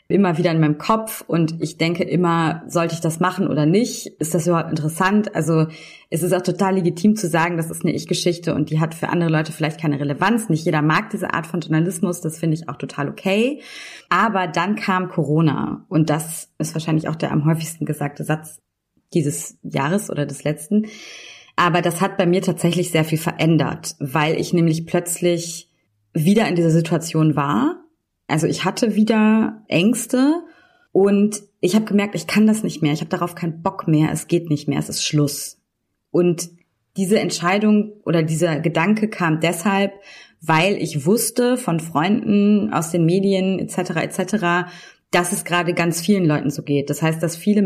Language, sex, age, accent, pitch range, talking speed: German, female, 20-39, German, 160-195 Hz, 185 wpm